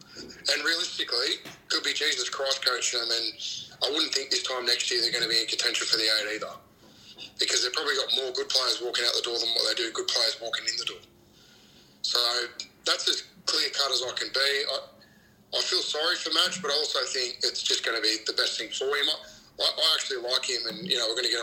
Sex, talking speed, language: male, 245 wpm, English